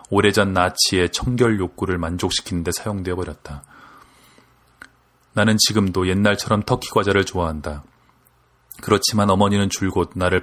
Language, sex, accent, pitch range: Korean, male, native, 90-105 Hz